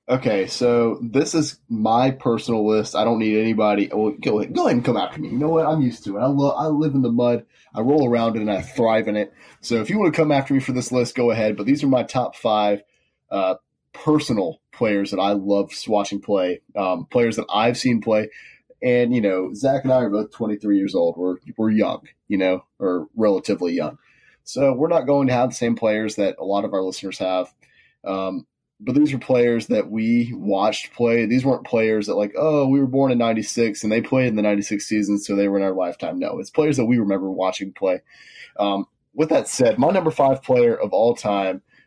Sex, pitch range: male, 100-130 Hz